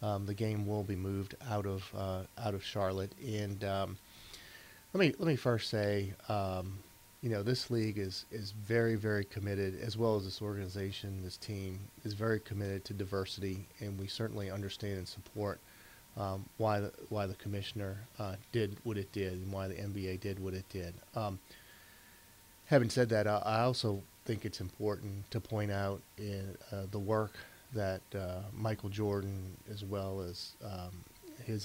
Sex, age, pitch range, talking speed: male, 30-49, 95-105 Hz, 175 wpm